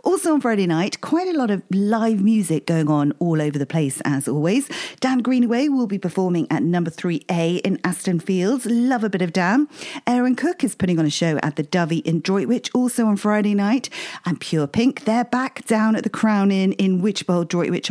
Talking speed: 215 wpm